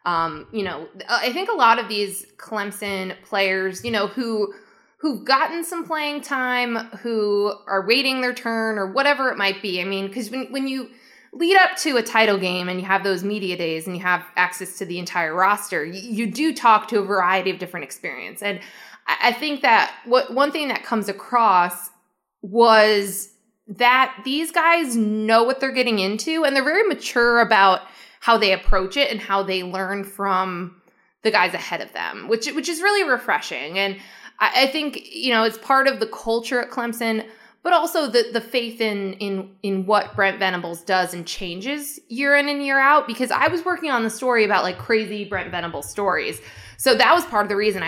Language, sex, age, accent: English, female, 20-39, American